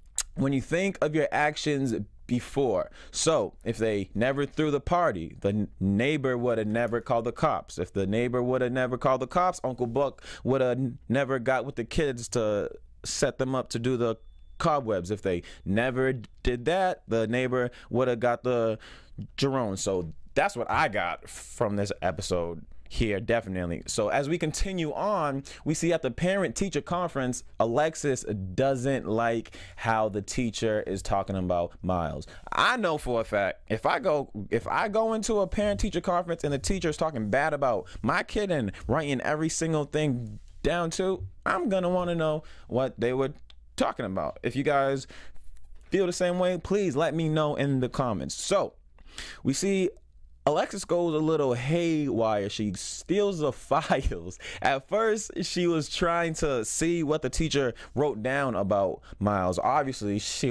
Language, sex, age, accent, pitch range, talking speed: English, male, 20-39, American, 105-155 Hz, 175 wpm